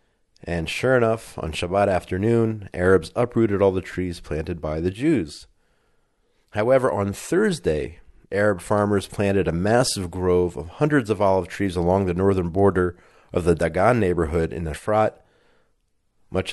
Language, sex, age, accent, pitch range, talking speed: English, male, 40-59, American, 85-100 Hz, 145 wpm